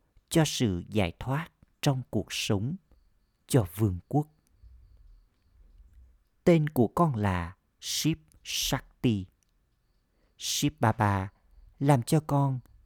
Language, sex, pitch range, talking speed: Vietnamese, male, 95-135 Hz, 100 wpm